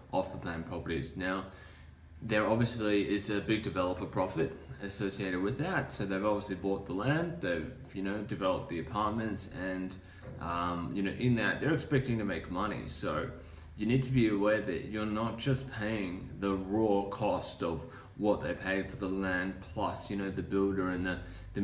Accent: Australian